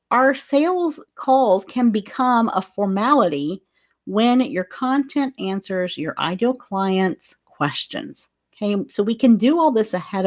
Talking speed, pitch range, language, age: 135 wpm, 185-255 Hz, English, 40-59